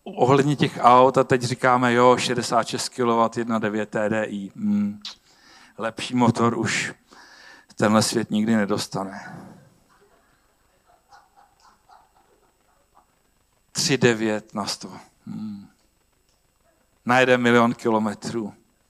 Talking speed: 80 wpm